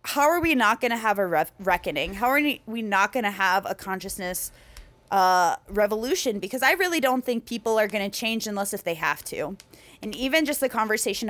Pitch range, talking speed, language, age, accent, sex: 190-235 Hz, 195 wpm, English, 20-39, American, female